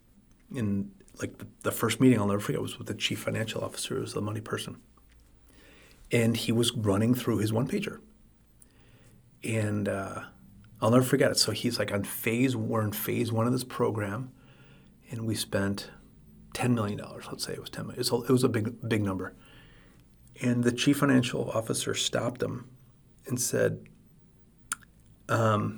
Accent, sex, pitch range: American, male, 100-120 Hz